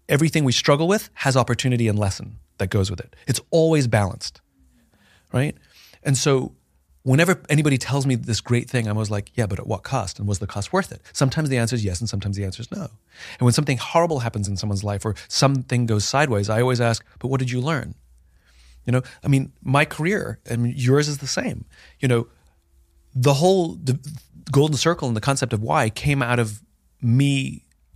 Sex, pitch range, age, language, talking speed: male, 105-140 Hz, 30-49, English, 205 wpm